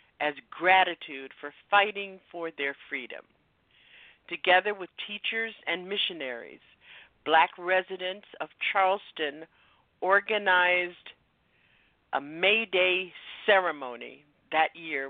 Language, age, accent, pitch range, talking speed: English, 50-69, American, 150-195 Hz, 90 wpm